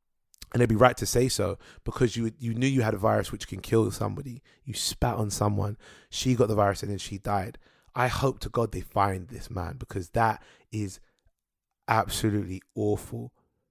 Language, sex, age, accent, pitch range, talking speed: English, male, 20-39, British, 105-125 Hz, 195 wpm